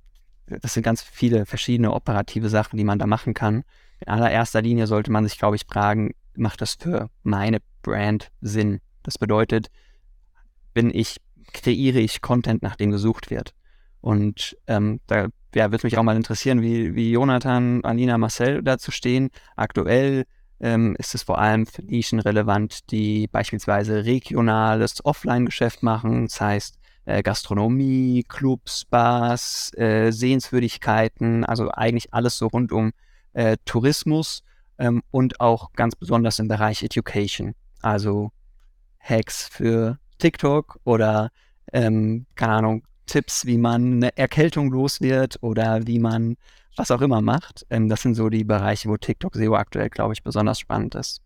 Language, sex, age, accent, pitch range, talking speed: German, male, 20-39, German, 105-120 Hz, 145 wpm